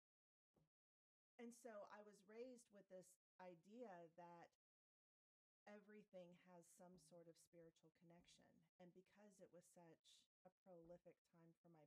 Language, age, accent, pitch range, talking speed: English, 40-59, American, 170-190 Hz, 130 wpm